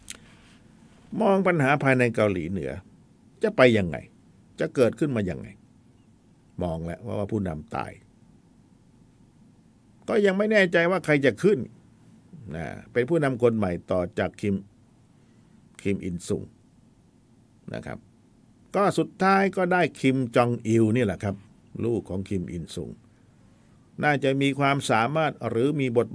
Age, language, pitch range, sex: 60-79, Thai, 115-160 Hz, male